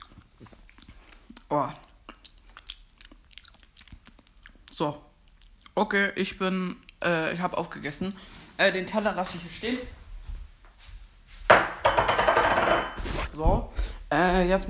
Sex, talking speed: female, 80 wpm